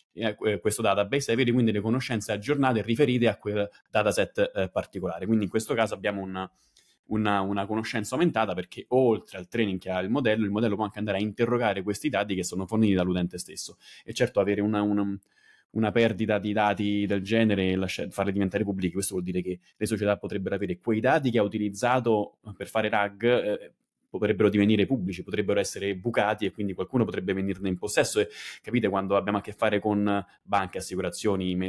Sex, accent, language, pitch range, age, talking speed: male, native, Italian, 95-115 Hz, 20-39, 190 wpm